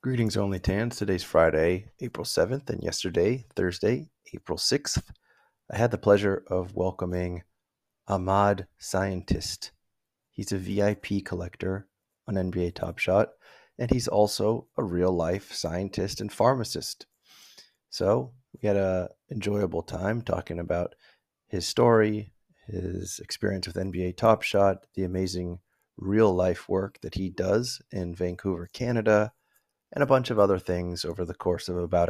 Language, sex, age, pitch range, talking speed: English, male, 30-49, 90-110 Hz, 140 wpm